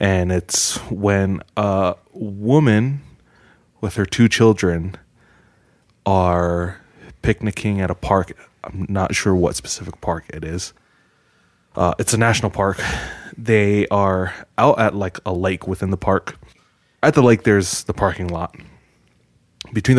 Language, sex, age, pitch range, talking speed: English, male, 20-39, 90-110 Hz, 135 wpm